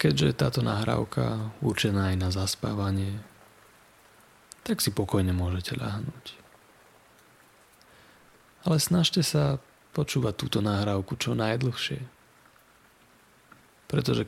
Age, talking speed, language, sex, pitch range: 30-49, 90 wpm, Slovak, male, 100-130 Hz